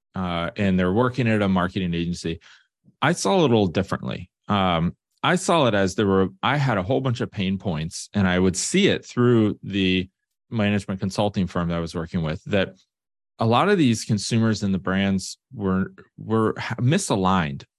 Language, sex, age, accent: English, male, 30-49, American